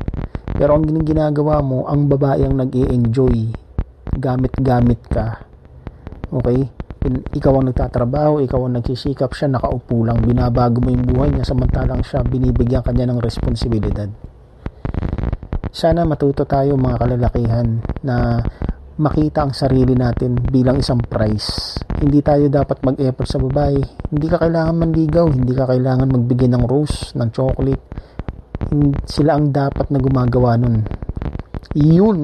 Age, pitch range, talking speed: 40-59, 120-145 Hz, 130 wpm